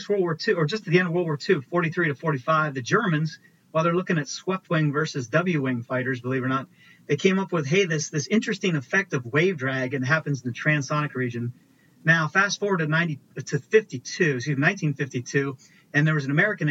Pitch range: 140-185 Hz